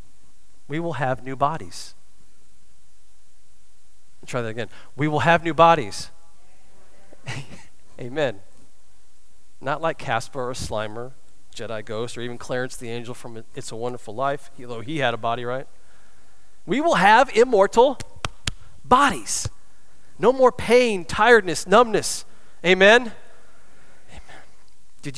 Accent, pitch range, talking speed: American, 105-150 Hz, 125 wpm